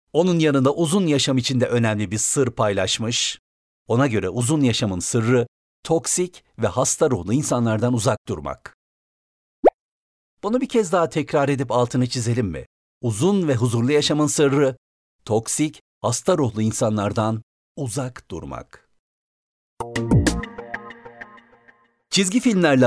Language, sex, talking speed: Turkish, male, 115 wpm